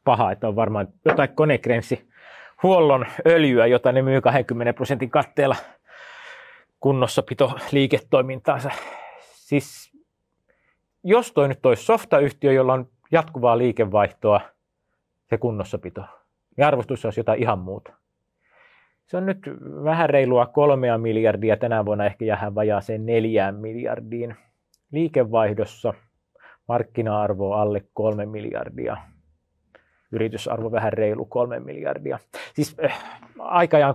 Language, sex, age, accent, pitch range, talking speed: Finnish, male, 30-49, native, 110-140 Hz, 105 wpm